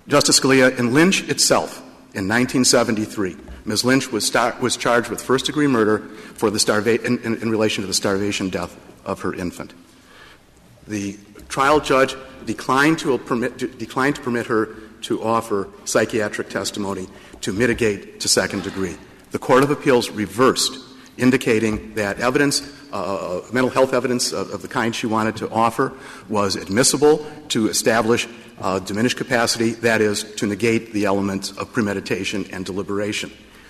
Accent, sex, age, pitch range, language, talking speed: American, male, 50-69, 105-130 Hz, English, 155 wpm